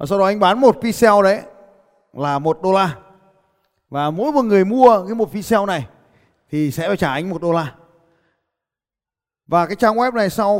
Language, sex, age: Vietnamese, male, 20-39